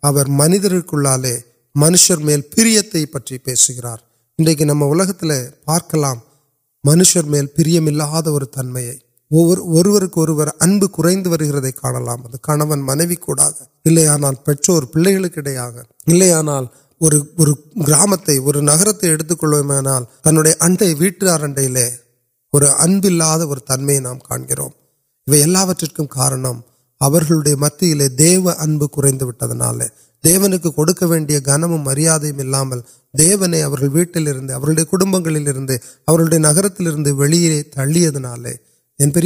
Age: 30-49